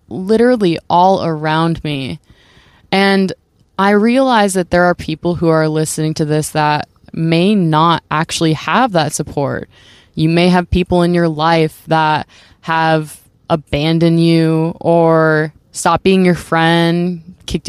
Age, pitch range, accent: 20-39, 155-180 Hz, American